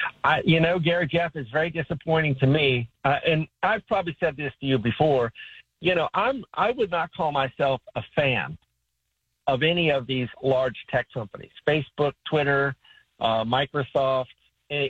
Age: 50-69